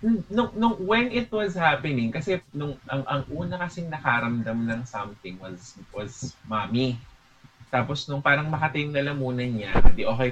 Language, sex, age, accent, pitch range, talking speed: Filipino, male, 20-39, native, 115-135 Hz, 165 wpm